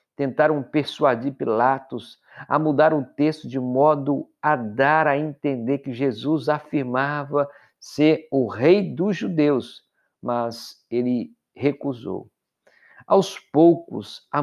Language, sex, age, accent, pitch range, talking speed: Portuguese, male, 50-69, Brazilian, 130-165 Hz, 110 wpm